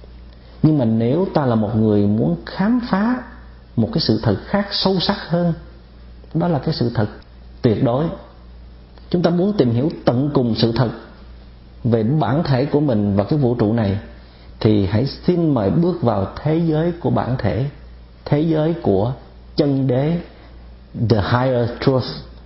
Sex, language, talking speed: male, Vietnamese, 170 wpm